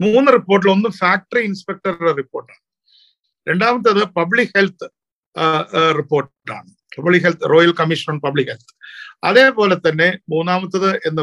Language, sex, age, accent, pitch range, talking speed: Malayalam, male, 50-69, native, 165-220 Hz, 105 wpm